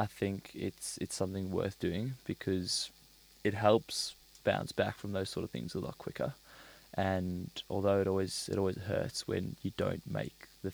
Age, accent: 10-29, Australian